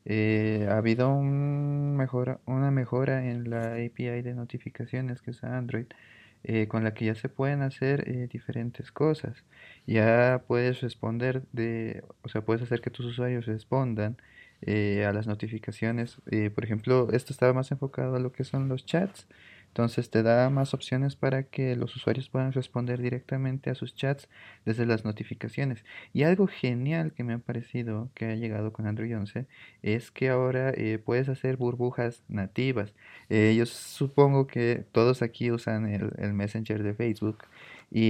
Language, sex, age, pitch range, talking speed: Spanish, male, 20-39, 110-130 Hz, 170 wpm